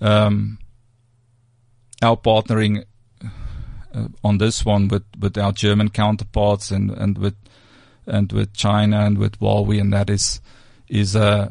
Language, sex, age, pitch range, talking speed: English, male, 40-59, 100-110 Hz, 130 wpm